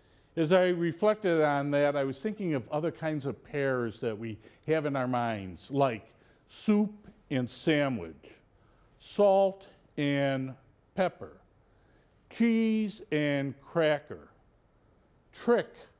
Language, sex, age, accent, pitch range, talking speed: English, male, 50-69, American, 115-180 Hz, 115 wpm